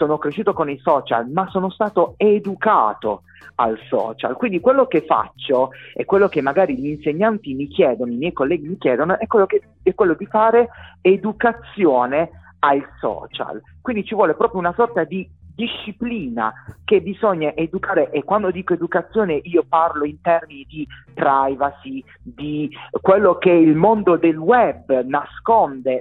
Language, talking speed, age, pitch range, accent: Italian, 150 wpm, 40-59, 145-210 Hz, native